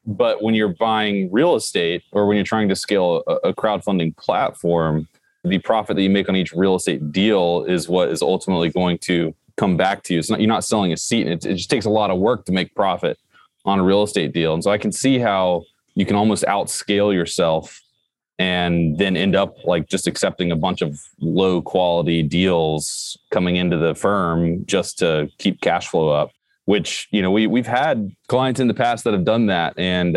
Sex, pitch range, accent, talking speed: male, 85-110 Hz, American, 215 wpm